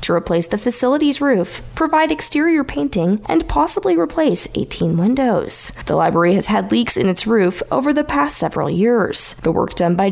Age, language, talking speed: 10-29, English, 180 wpm